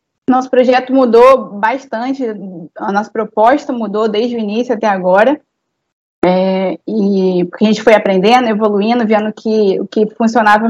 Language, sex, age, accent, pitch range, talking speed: Portuguese, female, 20-39, Brazilian, 205-245 Hz, 140 wpm